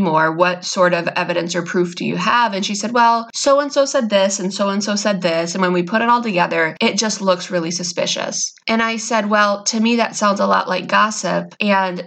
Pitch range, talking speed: 180-210 Hz, 230 wpm